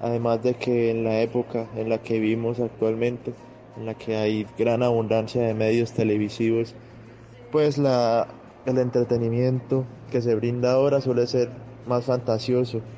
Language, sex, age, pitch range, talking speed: Spanish, male, 20-39, 115-125 Hz, 150 wpm